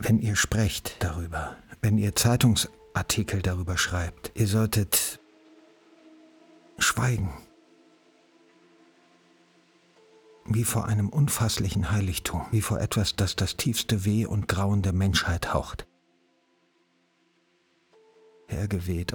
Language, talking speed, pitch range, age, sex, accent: German, 95 wpm, 90-110 Hz, 50-69, male, German